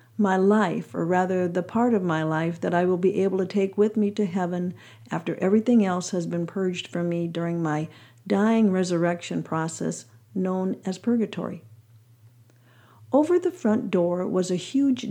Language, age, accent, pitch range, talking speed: English, 50-69, American, 150-215 Hz, 170 wpm